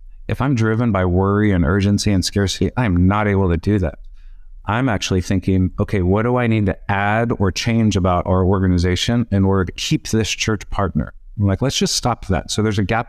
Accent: American